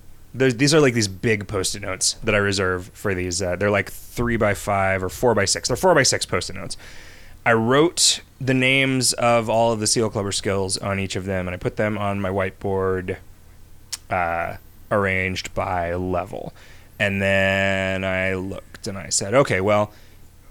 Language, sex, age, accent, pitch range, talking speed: English, male, 20-39, American, 95-115 Hz, 185 wpm